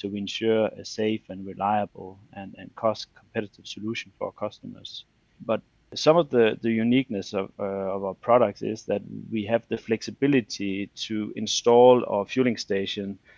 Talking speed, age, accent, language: 160 wpm, 30-49, Danish, English